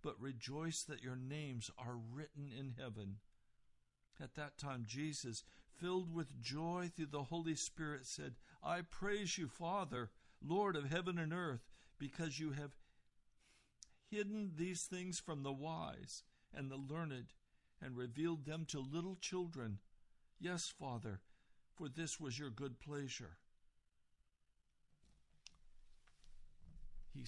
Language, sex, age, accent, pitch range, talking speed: English, male, 60-79, American, 115-160 Hz, 125 wpm